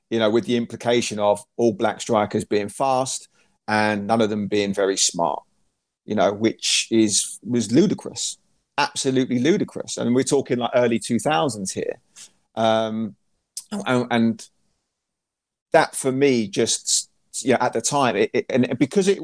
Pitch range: 115-140 Hz